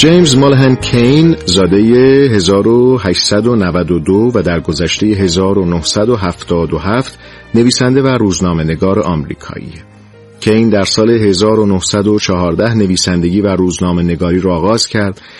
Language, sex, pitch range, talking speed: Persian, male, 90-115 Hz, 100 wpm